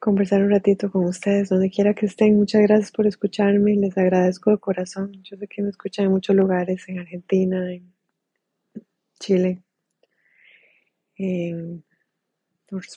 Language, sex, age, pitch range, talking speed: Spanish, female, 20-39, 195-225 Hz, 145 wpm